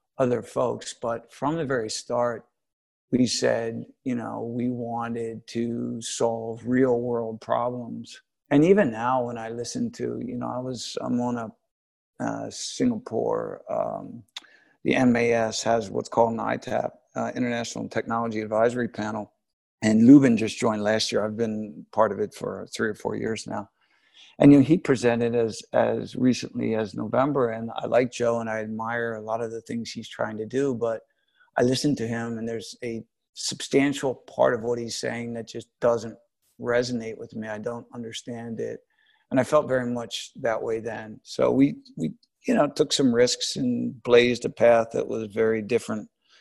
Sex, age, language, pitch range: male, 50-69, English, 115-125 Hz